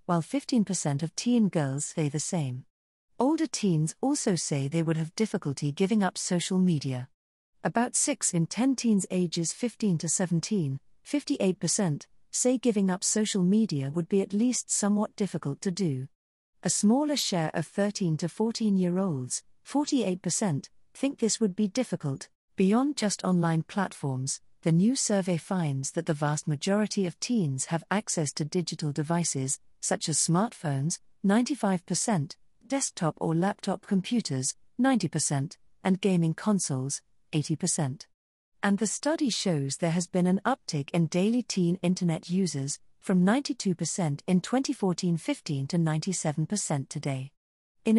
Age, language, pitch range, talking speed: 40-59, English, 160-220 Hz, 140 wpm